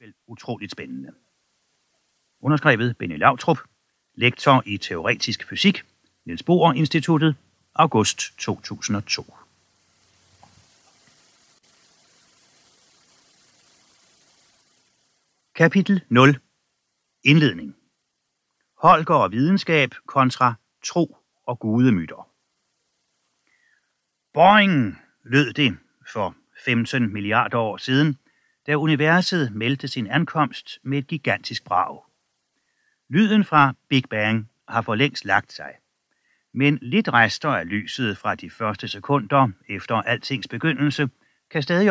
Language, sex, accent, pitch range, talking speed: Danish, male, native, 115-155 Hz, 95 wpm